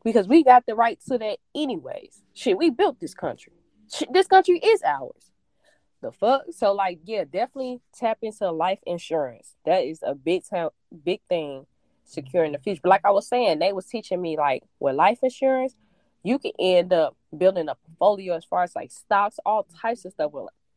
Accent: American